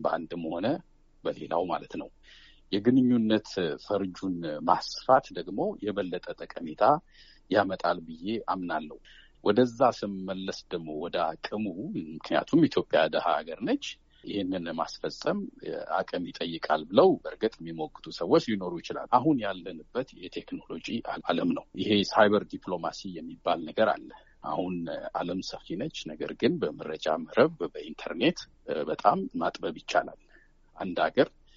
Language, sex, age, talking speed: Amharic, male, 50-69, 110 wpm